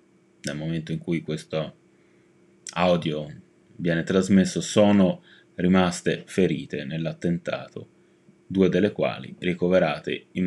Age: 30-49